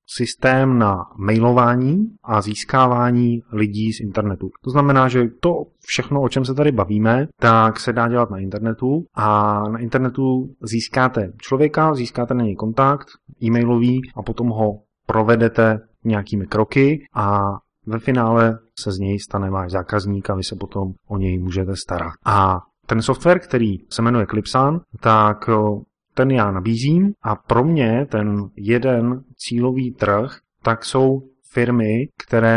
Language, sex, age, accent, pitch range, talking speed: Czech, male, 30-49, native, 105-125 Hz, 145 wpm